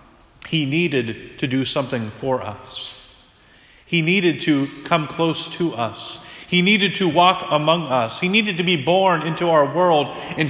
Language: English